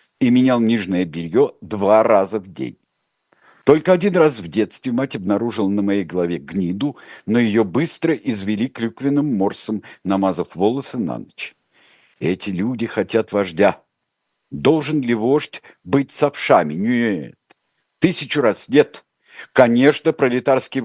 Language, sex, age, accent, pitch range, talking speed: Russian, male, 50-69, native, 110-145 Hz, 125 wpm